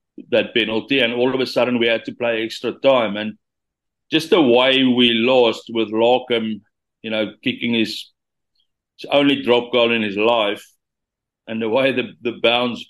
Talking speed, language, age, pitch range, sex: 170 wpm, English, 60-79, 110-130 Hz, male